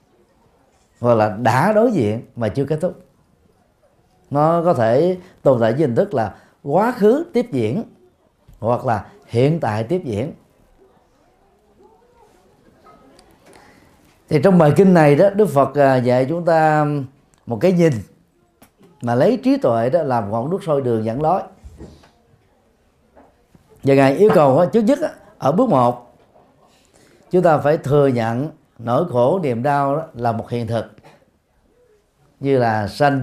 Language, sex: Vietnamese, male